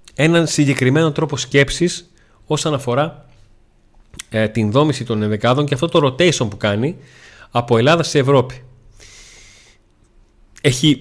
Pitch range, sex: 110-145 Hz, male